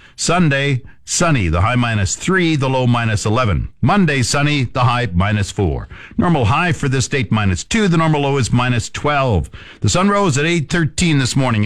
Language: English